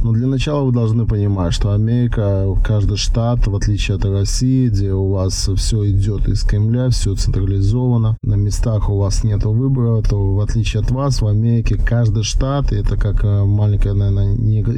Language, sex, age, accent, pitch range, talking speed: Russian, male, 20-39, native, 100-115 Hz, 175 wpm